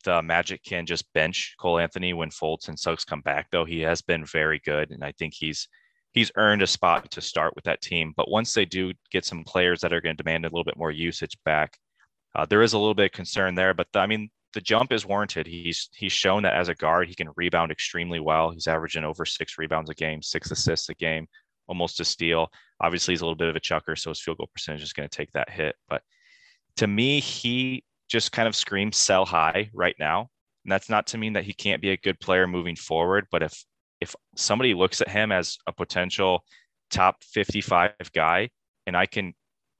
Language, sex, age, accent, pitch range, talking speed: English, male, 30-49, American, 80-95 Hz, 235 wpm